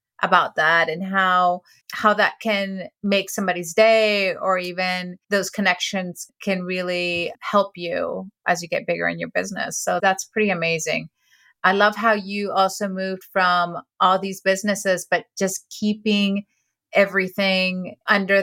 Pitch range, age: 175-205 Hz, 30-49